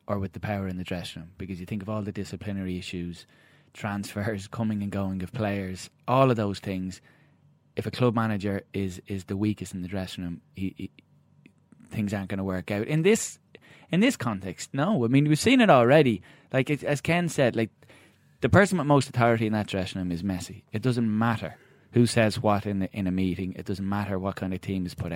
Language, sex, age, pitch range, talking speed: English, male, 20-39, 95-120 Hz, 225 wpm